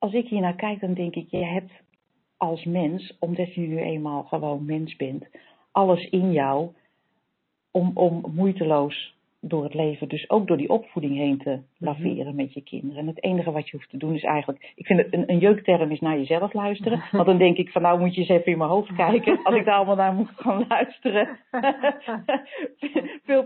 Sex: female